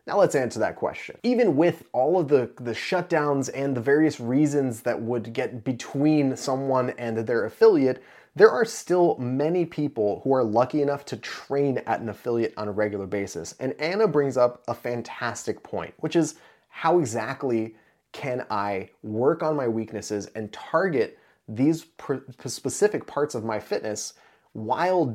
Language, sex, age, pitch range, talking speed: English, male, 30-49, 115-145 Hz, 165 wpm